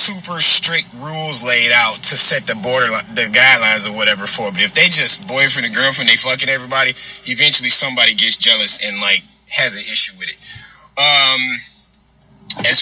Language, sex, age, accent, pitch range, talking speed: English, male, 30-49, American, 135-175 Hz, 175 wpm